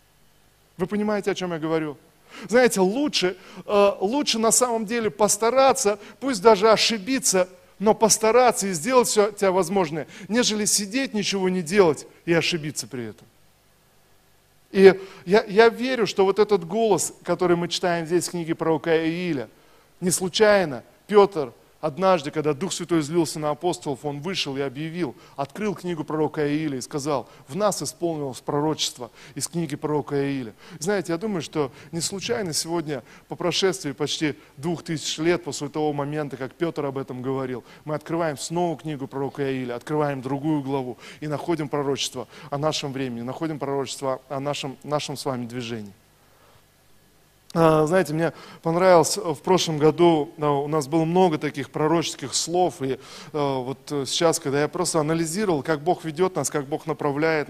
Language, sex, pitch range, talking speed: Russian, male, 140-180 Hz, 155 wpm